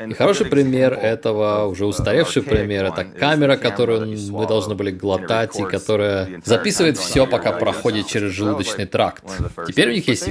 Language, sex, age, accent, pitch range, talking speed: Russian, male, 20-39, native, 100-120 Hz, 155 wpm